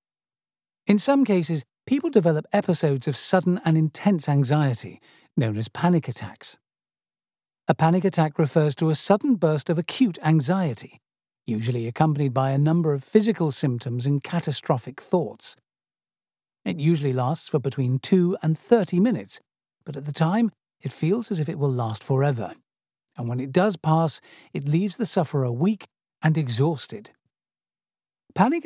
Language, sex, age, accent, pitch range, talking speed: English, male, 50-69, British, 135-180 Hz, 150 wpm